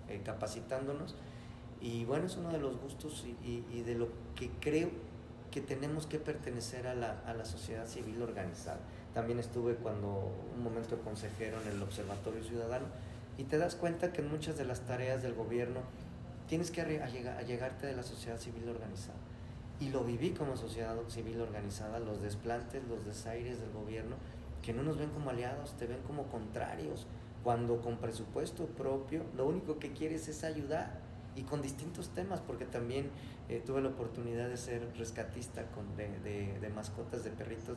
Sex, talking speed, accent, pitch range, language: male, 175 wpm, Mexican, 115-135 Hz, Spanish